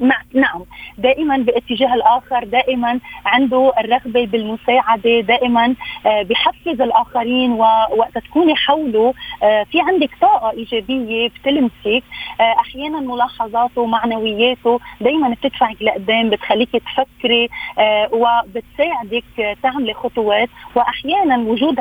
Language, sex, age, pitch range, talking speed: Arabic, female, 30-49, 220-255 Hz, 90 wpm